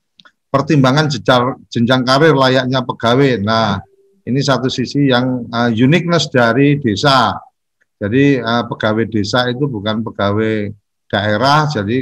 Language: Indonesian